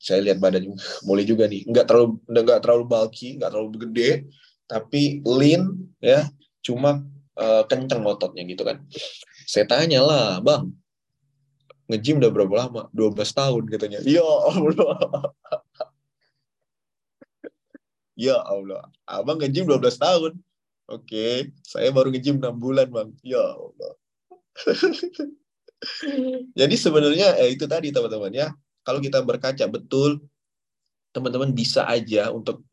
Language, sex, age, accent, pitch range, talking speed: Indonesian, male, 20-39, native, 110-145 Hz, 125 wpm